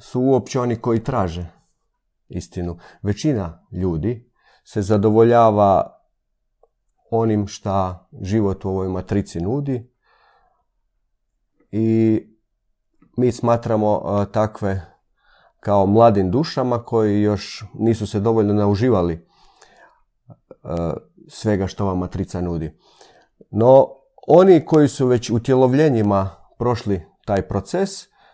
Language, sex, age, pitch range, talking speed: Croatian, male, 40-59, 95-125 Hz, 95 wpm